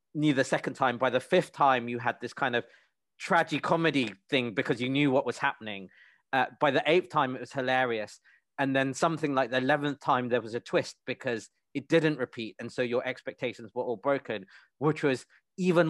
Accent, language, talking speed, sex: British, English, 210 wpm, male